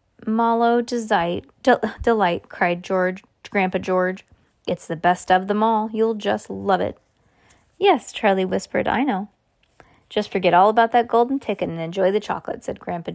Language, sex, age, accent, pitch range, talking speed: English, female, 20-39, American, 175-215 Hz, 155 wpm